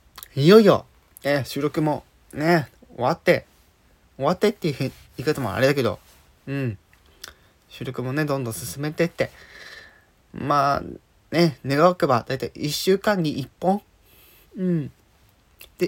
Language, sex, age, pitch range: Japanese, male, 20-39, 105-150 Hz